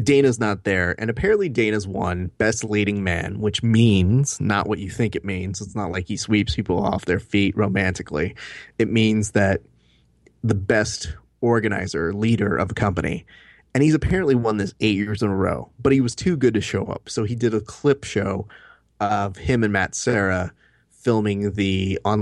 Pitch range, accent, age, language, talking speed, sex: 95-115 Hz, American, 30-49, English, 190 wpm, male